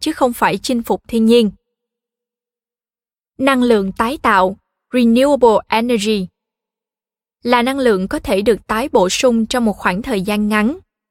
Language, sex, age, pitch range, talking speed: Vietnamese, female, 20-39, 210-250 Hz, 150 wpm